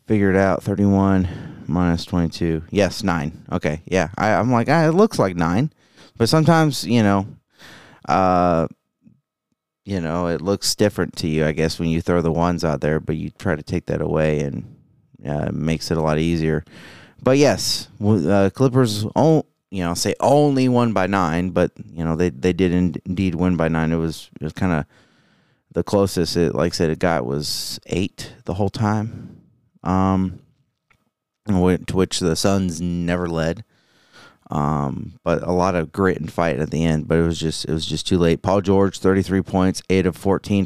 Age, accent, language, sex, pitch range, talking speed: 30-49, American, English, male, 85-100 Hz, 190 wpm